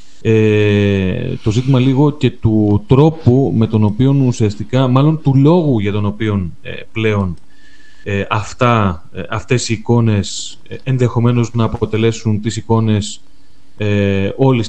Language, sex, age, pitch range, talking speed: Greek, male, 30-49, 100-125 Hz, 130 wpm